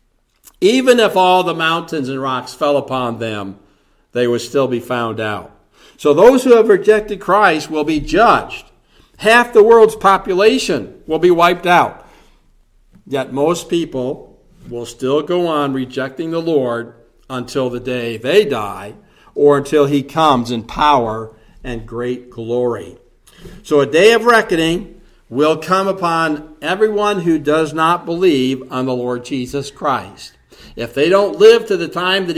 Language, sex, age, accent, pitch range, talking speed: English, male, 60-79, American, 125-170 Hz, 155 wpm